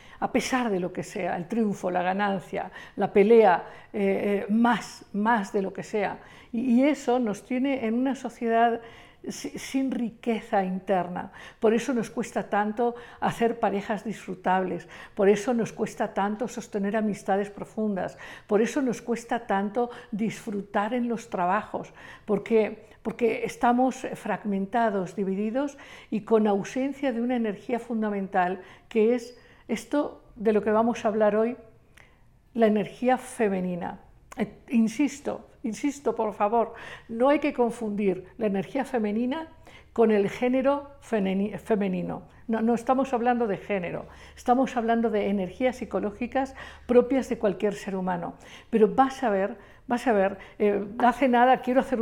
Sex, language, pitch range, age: female, Spanish, 200-240 Hz, 50-69